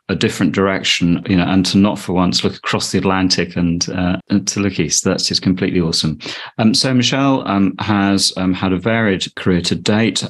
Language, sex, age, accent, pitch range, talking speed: English, male, 30-49, British, 85-100 Hz, 205 wpm